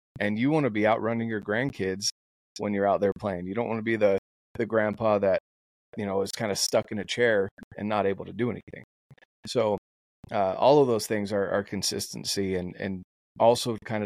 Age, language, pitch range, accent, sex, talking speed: 30-49, English, 100-125 Hz, American, male, 215 wpm